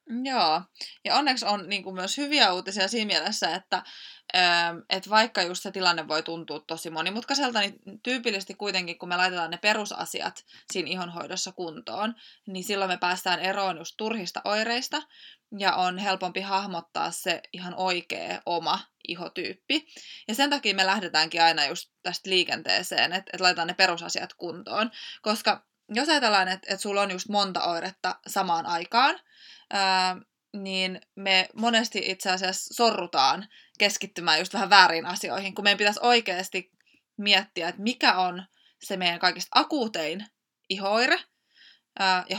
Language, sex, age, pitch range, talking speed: Finnish, female, 20-39, 175-210 Hz, 135 wpm